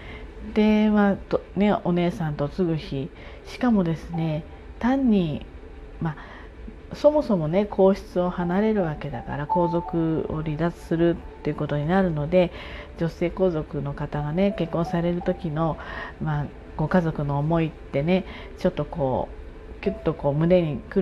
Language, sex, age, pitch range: Japanese, female, 40-59, 145-185 Hz